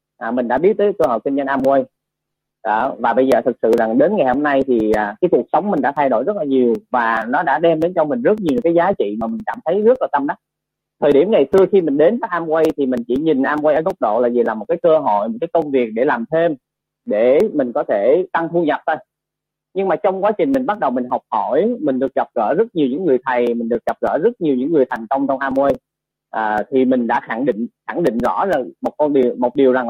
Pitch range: 130-180 Hz